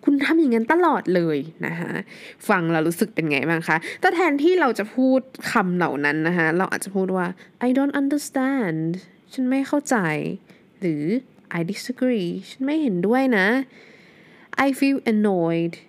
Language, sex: Thai, female